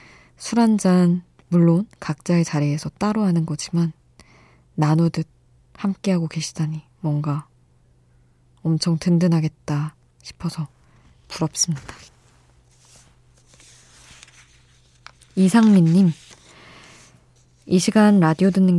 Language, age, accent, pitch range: Korean, 20-39, native, 140-180 Hz